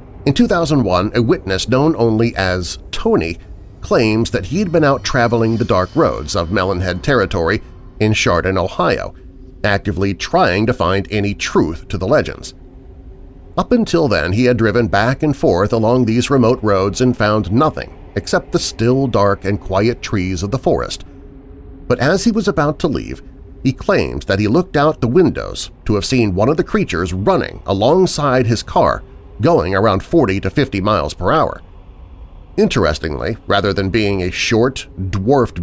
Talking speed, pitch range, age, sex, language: 170 wpm, 90-125 Hz, 40-59, male, English